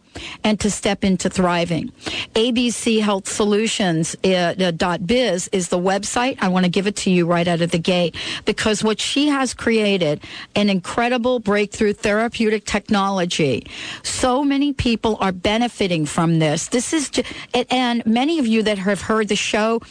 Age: 50-69